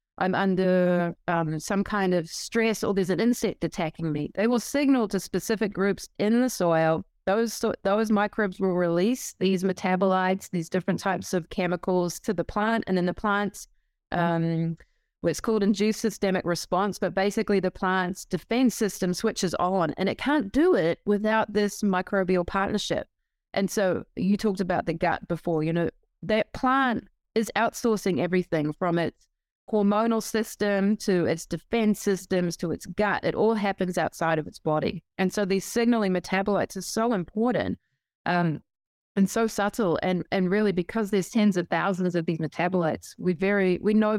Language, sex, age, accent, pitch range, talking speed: English, female, 30-49, Australian, 175-210 Hz, 170 wpm